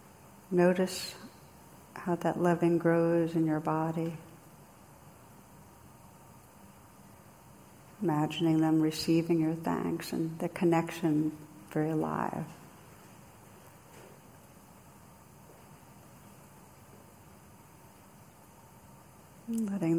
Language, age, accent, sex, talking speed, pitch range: English, 60-79, American, female, 55 wpm, 155-170 Hz